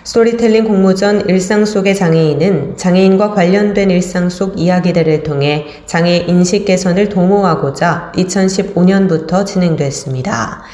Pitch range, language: 165-205 Hz, Korean